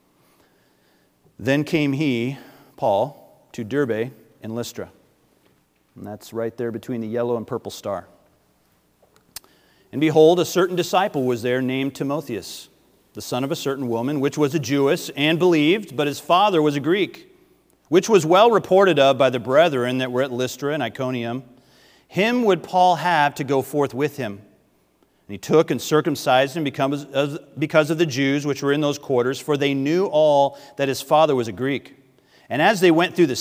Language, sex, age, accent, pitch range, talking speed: English, male, 40-59, American, 120-155 Hz, 180 wpm